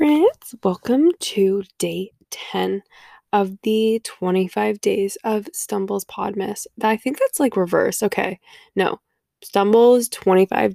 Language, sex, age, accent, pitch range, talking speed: English, female, 20-39, American, 180-235 Hz, 115 wpm